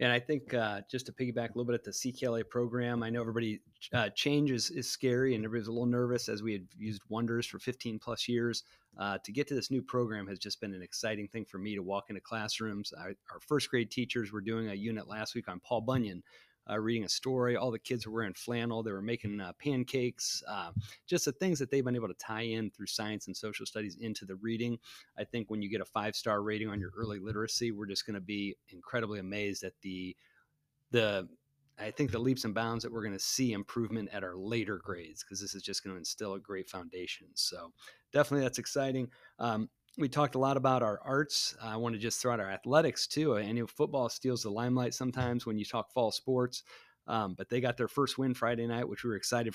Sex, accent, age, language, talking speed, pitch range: male, American, 30-49, English, 235 wpm, 105-125 Hz